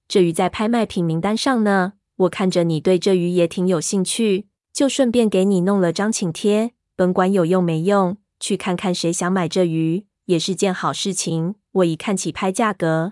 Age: 20-39